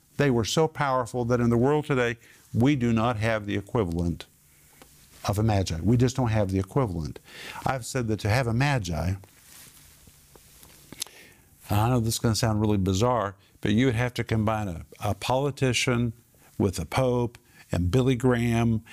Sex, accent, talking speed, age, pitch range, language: male, American, 175 wpm, 50-69, 105-130 Hz, English